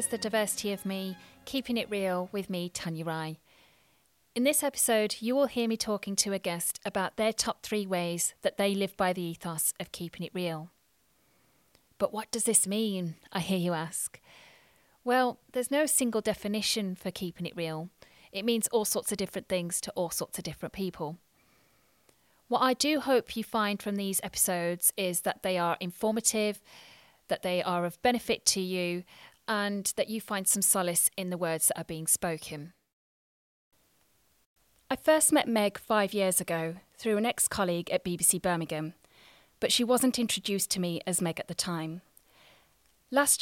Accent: British